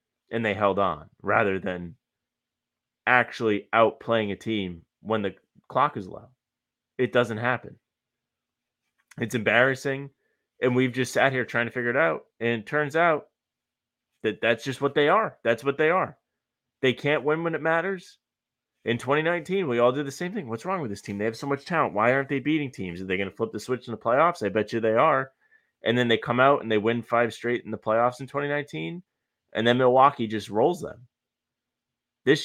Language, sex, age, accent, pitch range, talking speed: English, male, 20-39, American, 115-155 Hz, 205 wpm